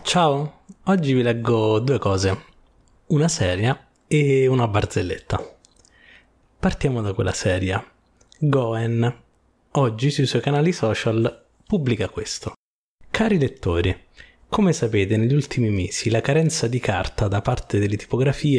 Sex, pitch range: male, 110-145 Hz